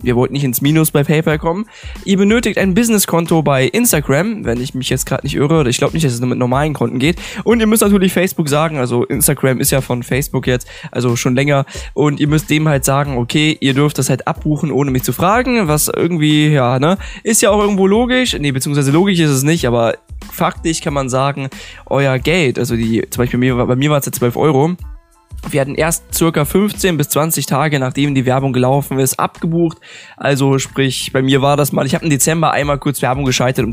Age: 10-29